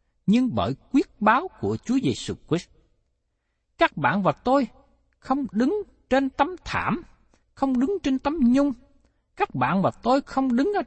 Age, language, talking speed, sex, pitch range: 60-79, Vietnamese, 160 wpm, male, 170-270 Hz